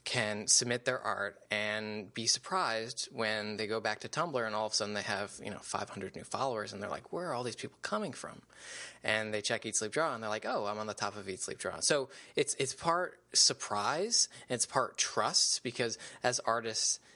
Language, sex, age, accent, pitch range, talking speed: English, male, 20-39, American, 110-125 Hz, 225 wpm